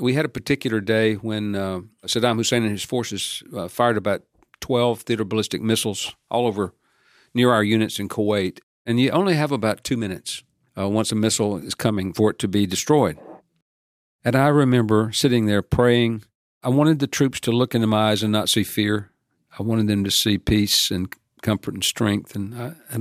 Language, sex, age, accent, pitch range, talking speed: English, male, 50-69, American, 95-120 Hz, 200 wpm